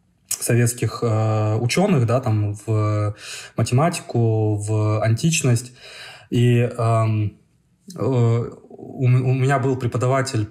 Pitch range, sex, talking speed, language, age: 110-130 Hz, male, 95 wpm, Russian, 20-39